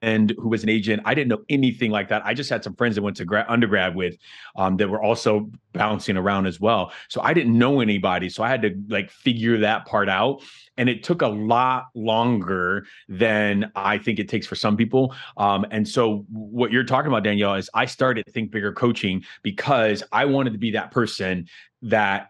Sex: male